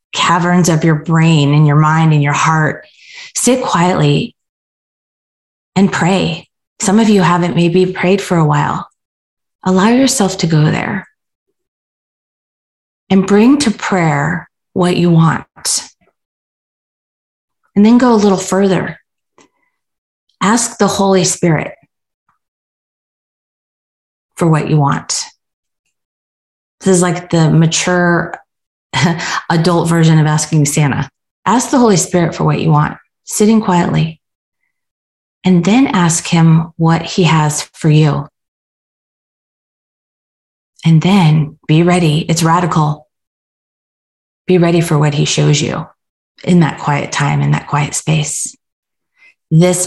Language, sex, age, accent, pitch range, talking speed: English, female, 30-49, American, 150-185 Hz, 120 wpm